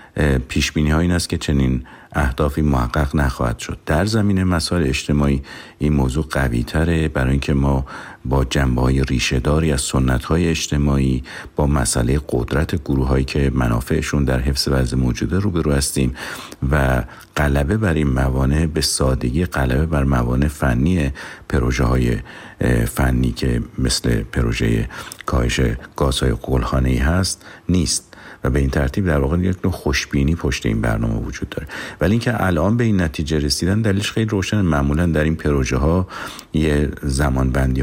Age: 50-69